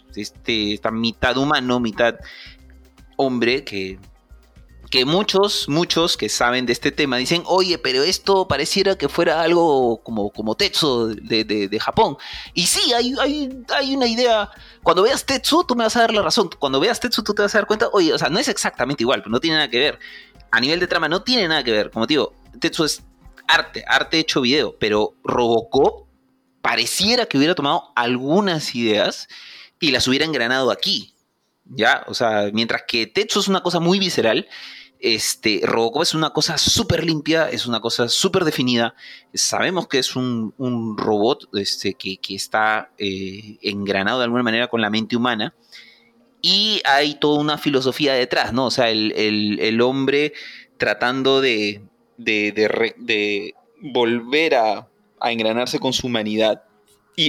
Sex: male